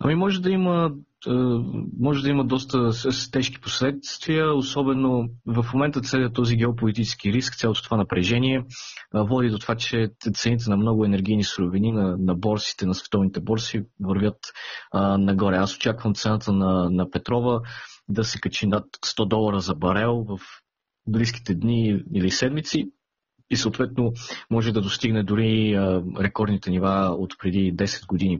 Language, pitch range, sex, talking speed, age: Bulgarian, 95-115 Hz, male, 145 wpm, 30-49